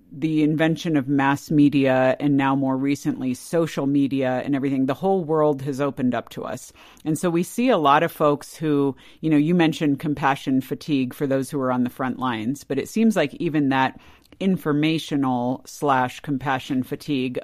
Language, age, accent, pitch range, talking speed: English, 50-69, American, 140-165 Hz, 185 wpm